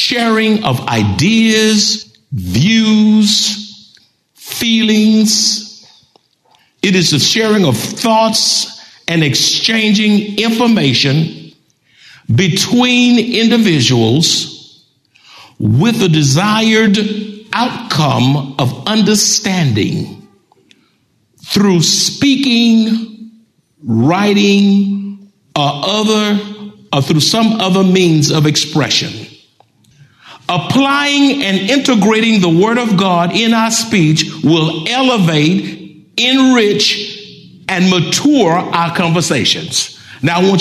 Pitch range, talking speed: 155-220 Hz, 80 wpm